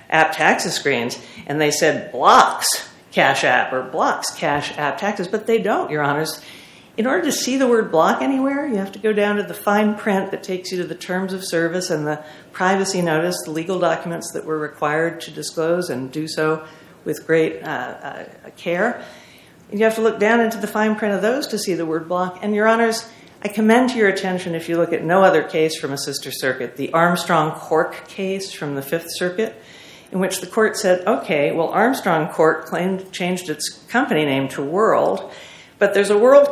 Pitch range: 160-210 Hz